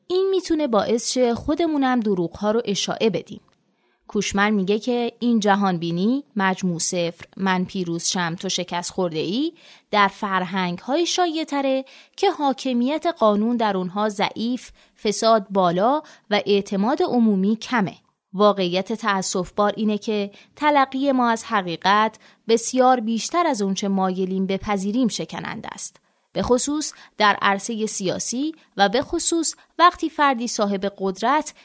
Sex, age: female, 20-39